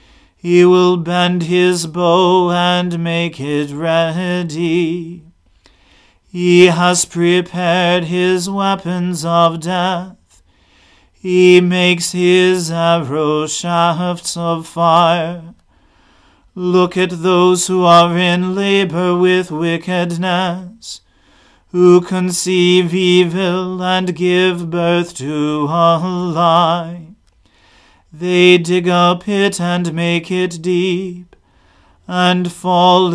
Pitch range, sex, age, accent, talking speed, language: 170-180 Hz, male, 40-59, American, 90 wpm, English